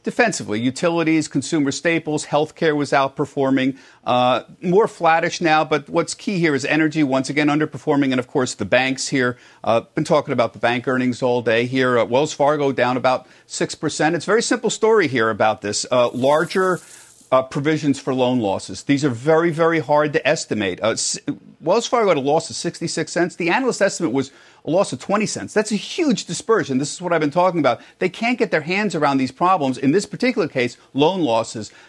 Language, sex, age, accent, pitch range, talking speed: English, male, 50-69, American, 130-185 Hz, 205 wpm